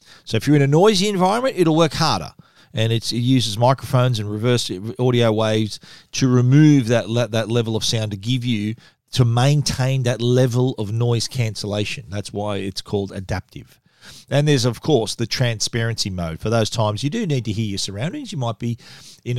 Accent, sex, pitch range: Australian, male, 115-140 Hz